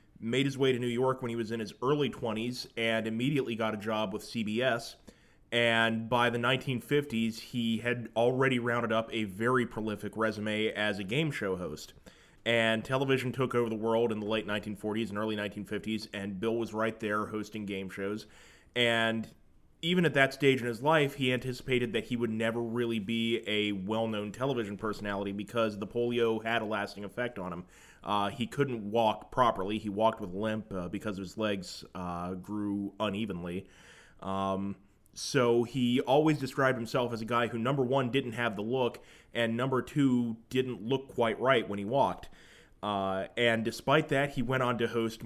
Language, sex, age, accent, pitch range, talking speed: English, male, 20-39, American, 105-120 Hz, 185 wpm